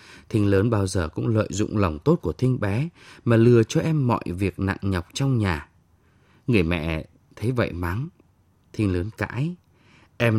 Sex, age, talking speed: male, 20-39, 180 wpm